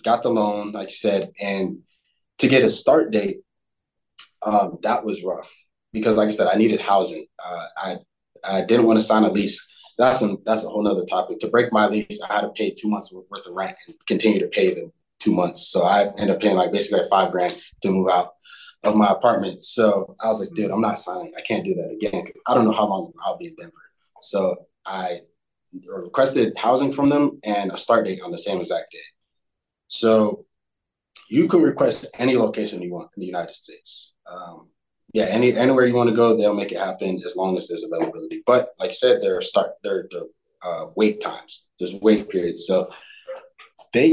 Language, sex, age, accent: English, male, 20-39, American